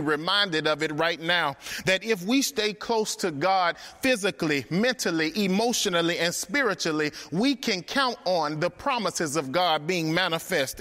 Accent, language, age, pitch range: American, English, 30-49, 160-240 Hz